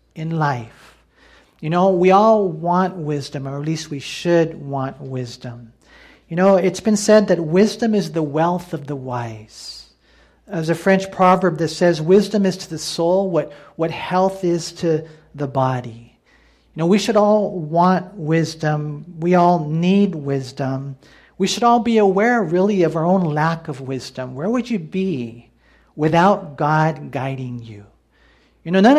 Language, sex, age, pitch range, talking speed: English, male, 50-69, 150-200 Hz, 165 wpm